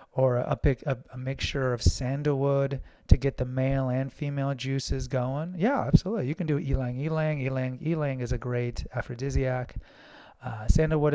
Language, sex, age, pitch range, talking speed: English, male, 30-49, 125-145 Hz, 170 wpm